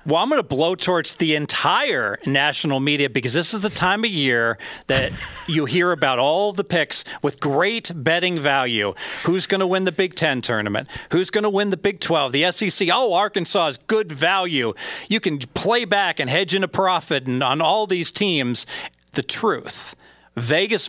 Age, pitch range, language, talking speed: 40-59, 140-185 Hz, English, 185 wpm